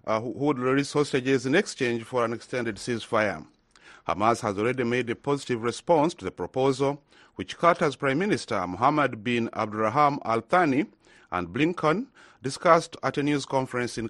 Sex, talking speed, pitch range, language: male, 160 wpm, 115-150 Hz, English